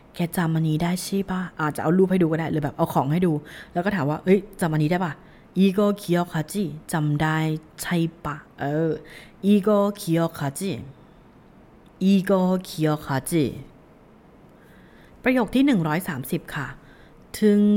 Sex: female